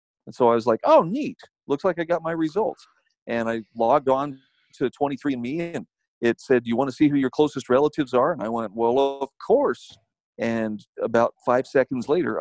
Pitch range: 115-150 Hz